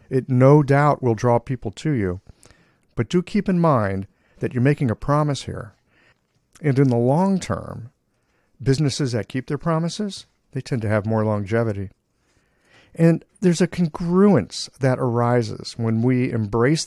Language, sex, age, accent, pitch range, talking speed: English, male, 50-69, American, 105-145 Hz, 155 wpm